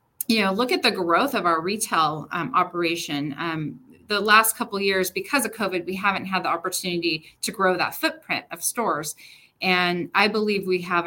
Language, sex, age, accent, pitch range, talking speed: English, female, 30-49, American, 170-215 Hz, 190 wpm